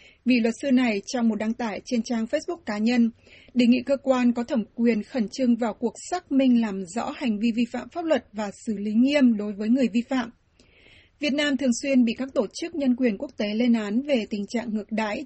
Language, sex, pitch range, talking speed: Vietnamese, female, 225-260 Hz, 245 wpm